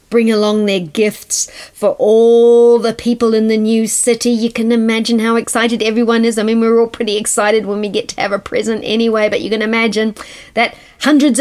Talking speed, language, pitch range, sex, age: 205 wpm, English, 220-300 Hz, female, 40-59